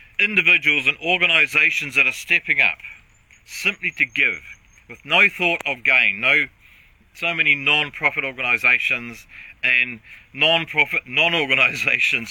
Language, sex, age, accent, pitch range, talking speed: English, male, 40-59, Australian, 95-145 Hz, 110 wpm